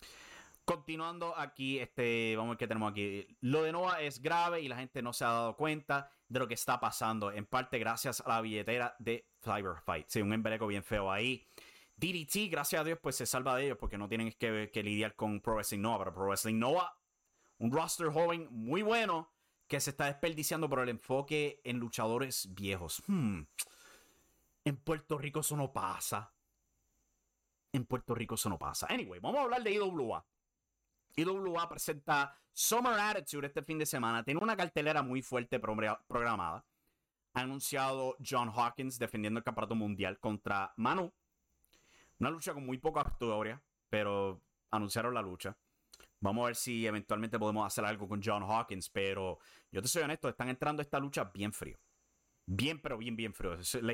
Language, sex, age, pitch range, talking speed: English, male, 30-49, 110-150 Hz, 180 wpm